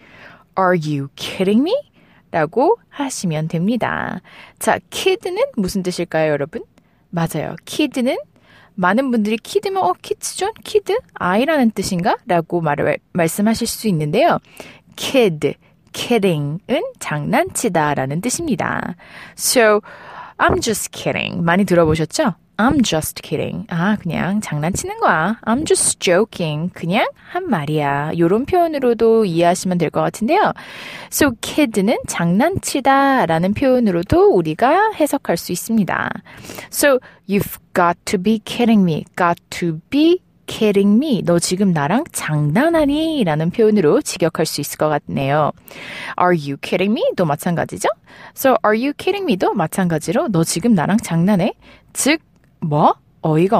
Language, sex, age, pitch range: Korean, female, 20-39, 170-255 Hz